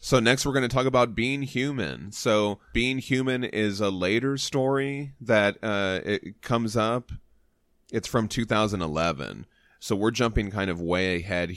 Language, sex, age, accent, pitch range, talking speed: English, male, 30-49, American, 90-110 Hz, 160 wpm